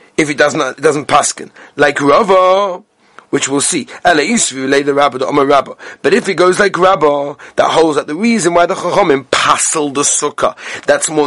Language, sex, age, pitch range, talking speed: English, male, 30-49, 170-245 Hz, 180 wpm